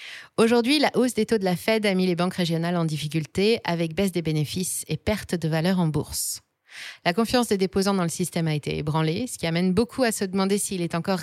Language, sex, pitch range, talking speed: French, female, 160-220 Hz, 240 wpm